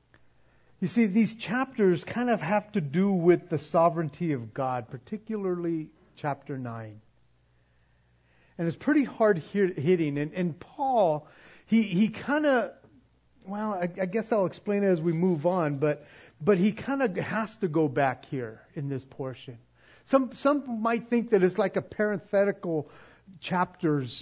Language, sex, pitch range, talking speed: English, male, 130-200 Hz, 160 wpm